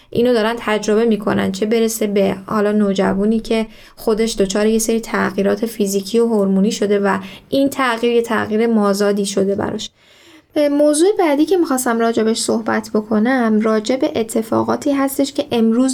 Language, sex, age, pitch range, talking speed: Persian, female, 10-29, 210-260 Hz, 145 wpm